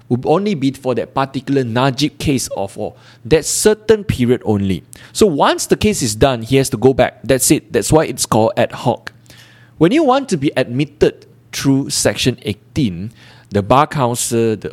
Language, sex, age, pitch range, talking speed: English, male, 20-39, 110-140 Hz, 185 wpm